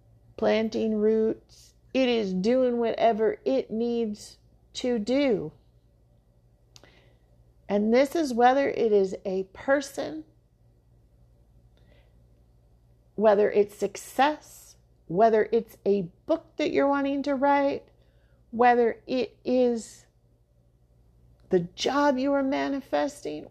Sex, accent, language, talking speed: female, American, English, 95 wpm